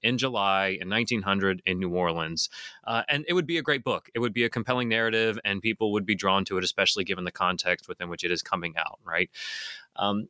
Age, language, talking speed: 30-49, English, 235 wpm